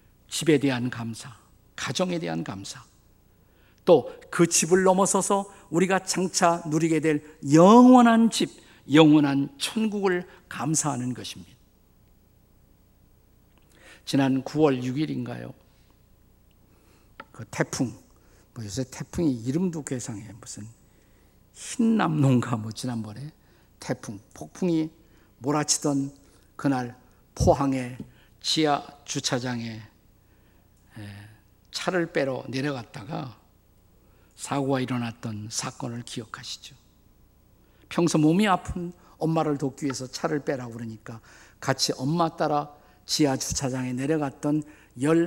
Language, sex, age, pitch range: Korean, male, 50-69, 110-155 Hz